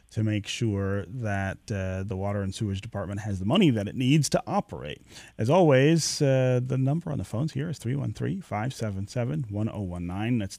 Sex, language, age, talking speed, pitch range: male, English, 30-49, 180 wpm, 105-135 Hz